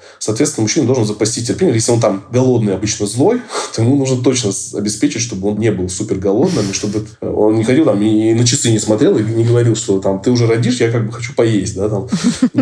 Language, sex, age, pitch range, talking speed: Russian, male, 20-39, 95-120 Hz, 230 wpm